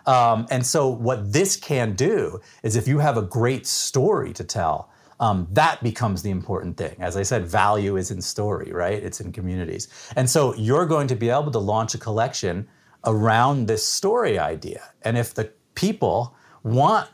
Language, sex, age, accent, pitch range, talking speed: English, male, 40-59, American, 105-140 Hz, 185 wpm